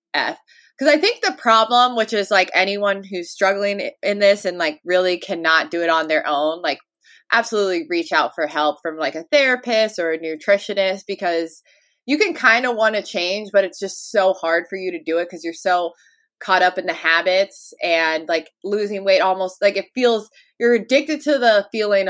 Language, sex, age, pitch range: English, female, 20-39, 165-215 Hz